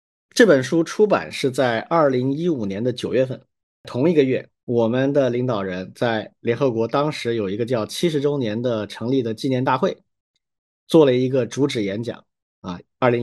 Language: Chinese